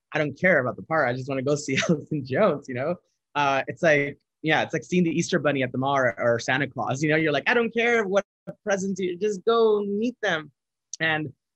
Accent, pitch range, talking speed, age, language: American, 135-175 Hz, 245 wpm, 20-39, English